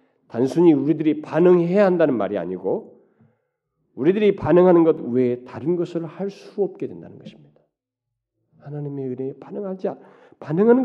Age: 40-59